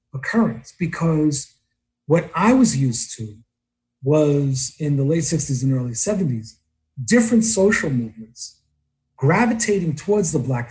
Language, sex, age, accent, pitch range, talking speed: English, male, 50-69, American, 120-170 Hz, 125 wpm